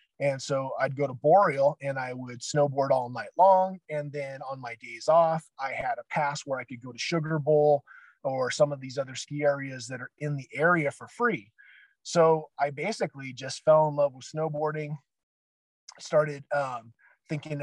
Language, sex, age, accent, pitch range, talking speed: English, male, 30-49, American, 135-155 Hz, 190 wpm